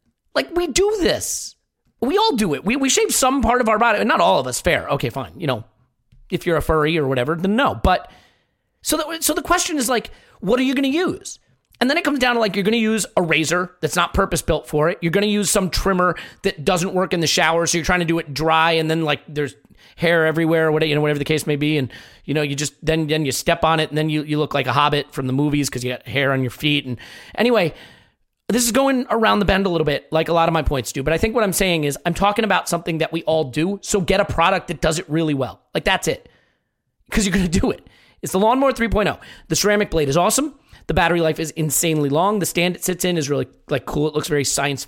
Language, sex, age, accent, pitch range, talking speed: English, male, 30-49, American, 150-210 Hz, 275 wpm